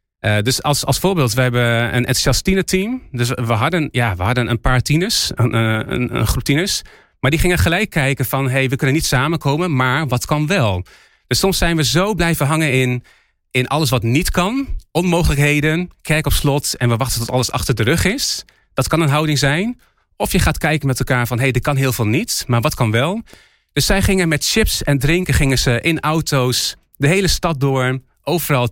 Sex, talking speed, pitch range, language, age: male, 215 wpm, 120-155 Hz, Dutch, 40-59